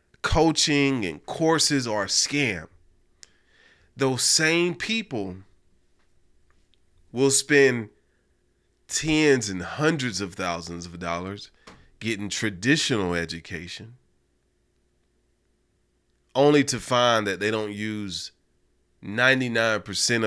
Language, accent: English, American